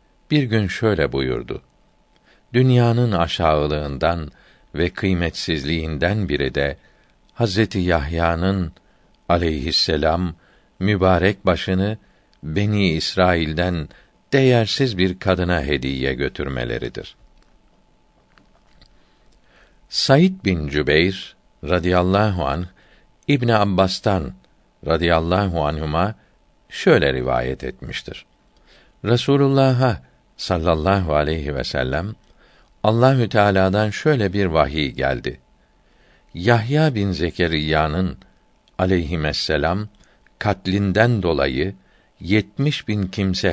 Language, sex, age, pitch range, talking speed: Turkish, male, 60-79, 80-105 Hz, 75 wpm